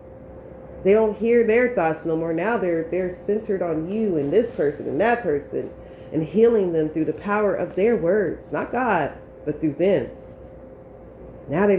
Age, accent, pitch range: 30-49, American, 150-185 Hz